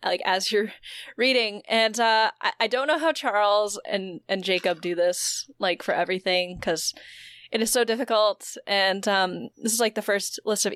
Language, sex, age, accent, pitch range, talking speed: English, female, 20-39, American, 185-245 Hz, 190 wpm